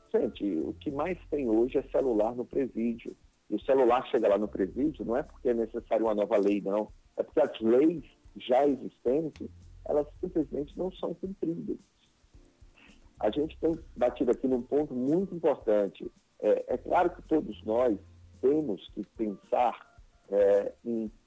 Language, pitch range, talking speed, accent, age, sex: Portuguese, 110-155 Hz, 160 wpm, Brazilian, 50-69, male